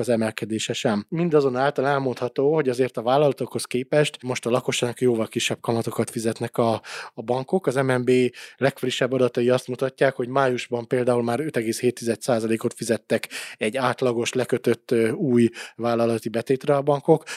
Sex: male